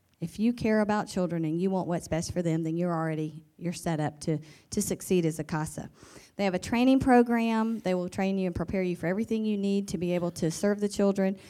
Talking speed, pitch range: 245 wpm, 170-205 Hz